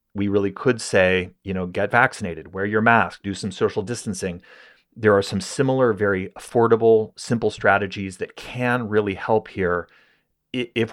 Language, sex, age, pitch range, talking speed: English, male, 30-49, 90-105 Hz, 160 wpm